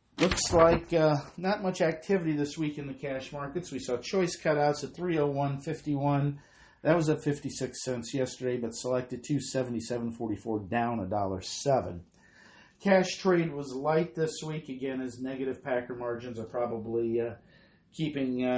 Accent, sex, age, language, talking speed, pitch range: American, male, 50-69, English, 140 wpm, 120-145 Hz